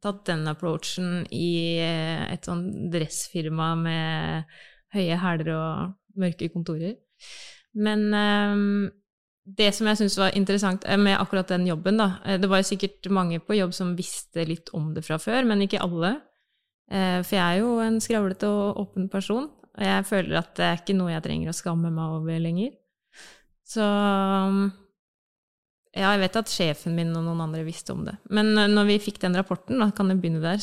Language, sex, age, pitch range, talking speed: English, female, 20-39, 170-205 Hz, 175 wpm